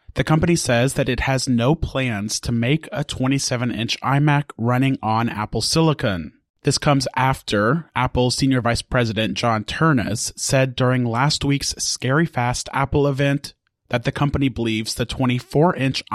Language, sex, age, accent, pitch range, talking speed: English, male, 30-49, American, 120-140 Hz, 150 wpm